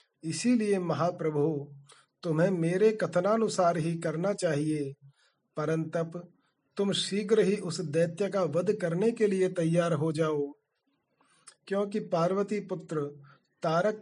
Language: Hindi